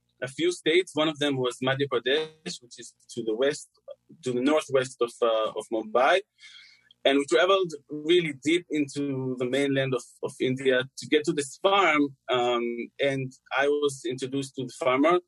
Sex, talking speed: male, 175 wpm